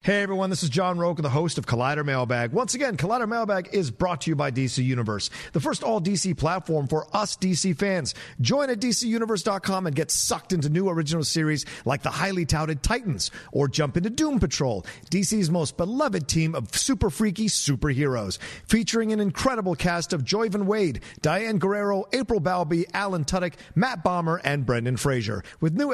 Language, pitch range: English, 140-200 Hz